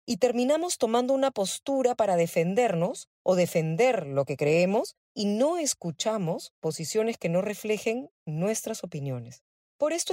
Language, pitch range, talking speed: Spanish, 170-245 Hz, 135 wpm